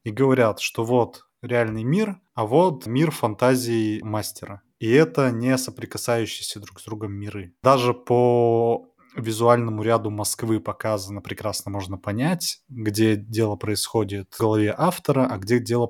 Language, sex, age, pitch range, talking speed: Russian, male, 20-39, 105-125 Hz, 140 wpm